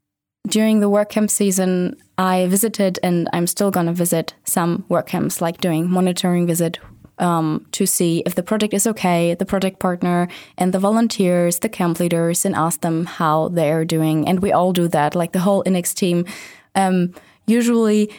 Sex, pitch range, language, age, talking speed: female, 170-195 Hz, Czech, 20-39, 180 wpm